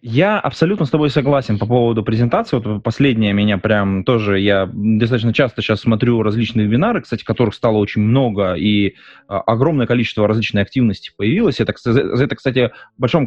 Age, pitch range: 20-39, 105-135 Hz